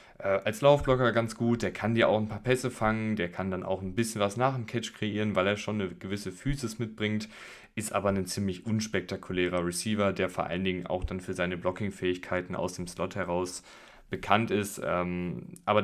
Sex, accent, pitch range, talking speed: male, German, 95-110 Hz, 195 wpm